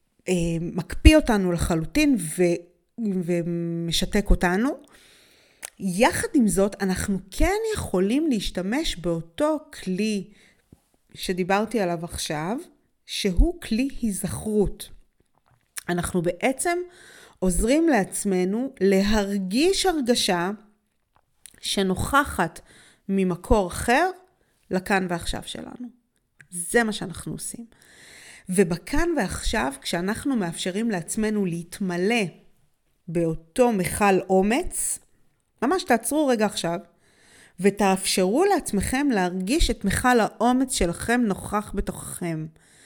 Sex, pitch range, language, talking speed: female, 185-250 Hz, Hebrew, 85 wpm